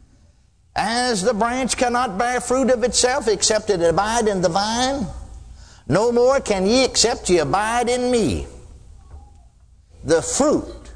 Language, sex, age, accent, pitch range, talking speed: English, male, 60-79, American, 165-250 Hz, 135 wpm